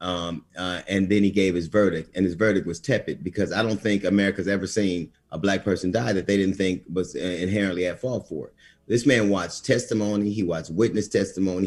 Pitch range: 95-115 Hz